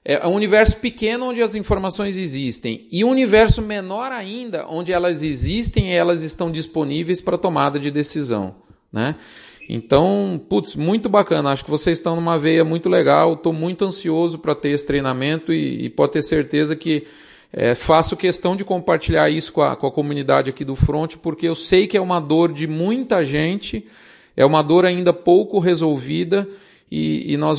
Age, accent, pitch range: 40-59, Brazilian, 150-195 Hz